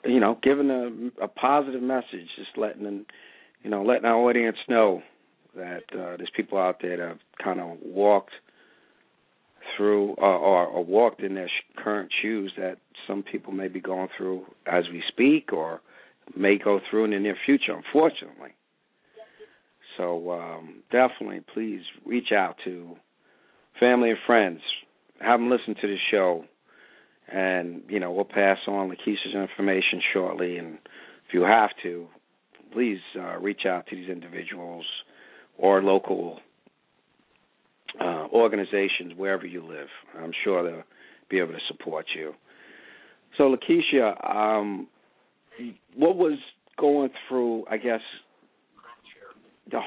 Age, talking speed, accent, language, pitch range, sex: 50-69, 140 wpm, American, English, 95-115 Hz, male